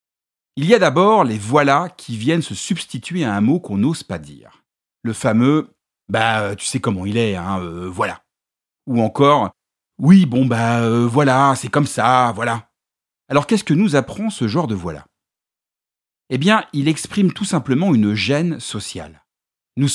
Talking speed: 185 wpm